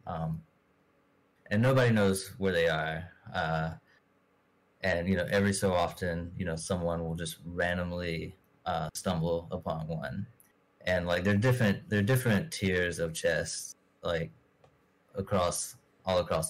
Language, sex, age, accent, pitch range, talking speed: English, male, 20-39, American, 85-100 Hz, 135 wpm